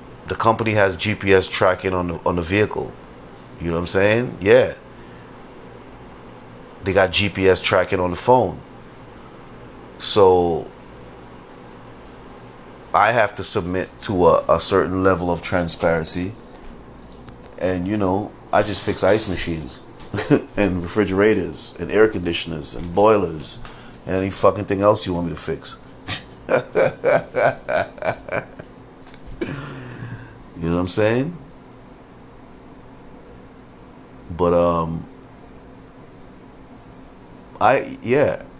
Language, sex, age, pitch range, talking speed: English, male, 30-49, 85-110 Hz, 105 wpm